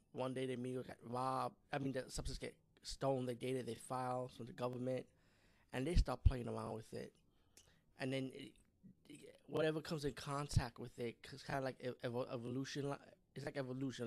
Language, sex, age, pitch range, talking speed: English, male, 20-39, 120-135 Hz, 190 wpm